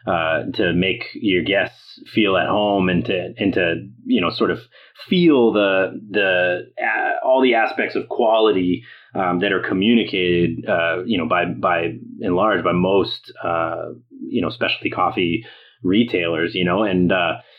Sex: male